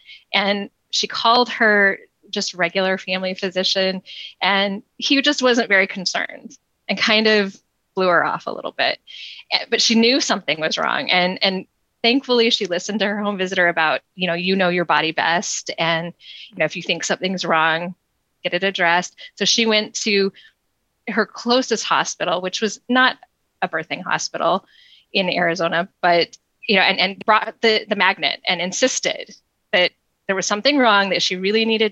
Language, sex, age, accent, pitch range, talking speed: English, female, 20-39, American, 185-220 Hz, 175 wpm